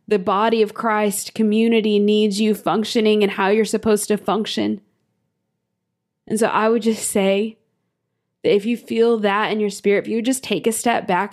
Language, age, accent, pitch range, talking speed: English, 20-39, American, 205-225 Hz, 185 wpm